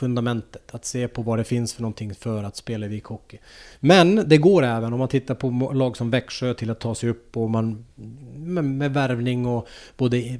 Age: 30-49